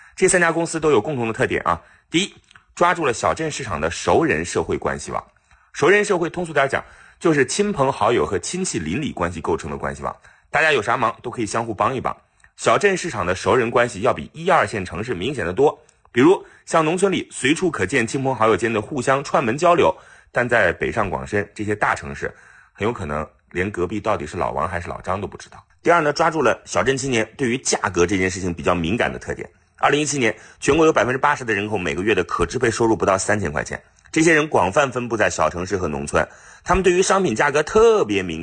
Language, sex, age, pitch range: Chinese, male, 30-49, 100-170 Hz